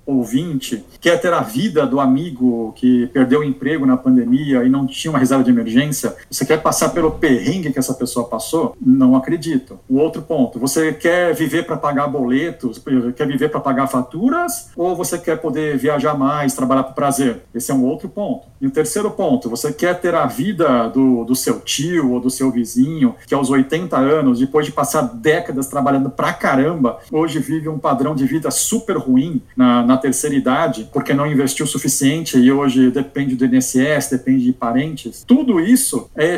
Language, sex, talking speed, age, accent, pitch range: Portuguese, male, 190 wpm, 50-69, Brazilian, 130-170 Hz